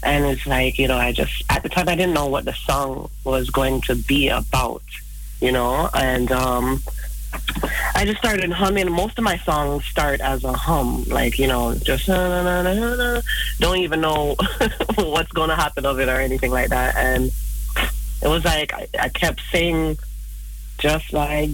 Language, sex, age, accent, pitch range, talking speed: Dutch, female, 30-49, American, 125-165 Hz, 180 wpm